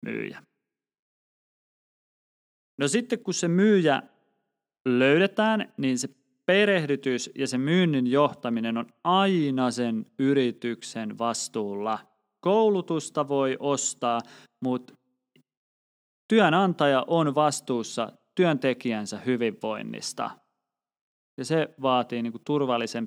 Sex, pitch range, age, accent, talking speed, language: male, 115-140 Hz, 30-49, native, 80 wpm, Finnish